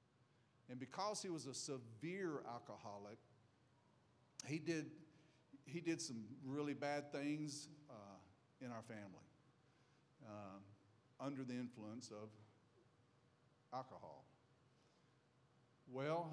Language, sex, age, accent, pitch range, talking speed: English, male, 50-69, American, 115-150 Hz, 95 wpm